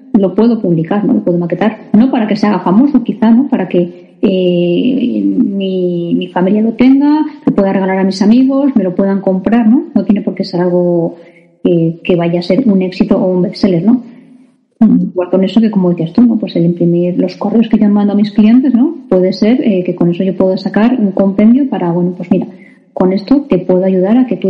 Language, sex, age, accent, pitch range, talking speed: Spanish, female, 20-39, Spanish, 185-225 Hz, 235 wpm